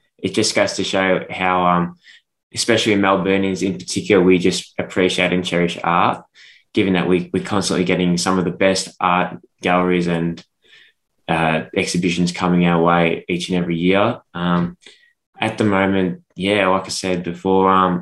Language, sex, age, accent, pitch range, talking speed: English, male, 10-29, Australian, 90-100 Hz, 170 wpm